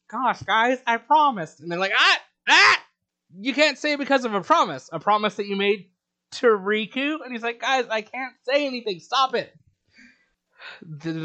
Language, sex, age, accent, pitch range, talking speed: English, male, 20-39, American, 130-195 Hz, 180 wpm